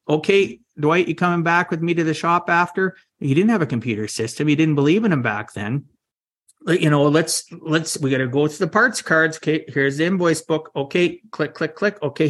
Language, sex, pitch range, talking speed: English, male, 130-170 Hz, 230 wpm